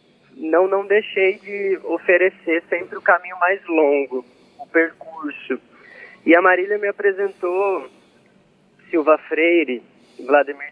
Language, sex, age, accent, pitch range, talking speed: Portuguese, male, 20-39, Brazilian, 150-195 Hz, 110 wpm